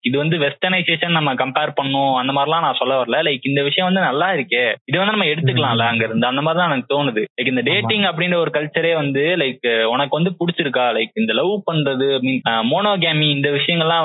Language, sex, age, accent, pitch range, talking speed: Tamil, male, 20-39, native, 130-170 Hz, 60 wpm